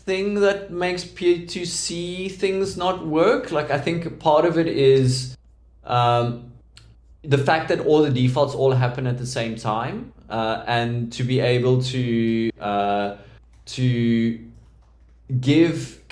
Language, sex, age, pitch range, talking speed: English, male, 20-39, 110-130 Hz, 135 wpm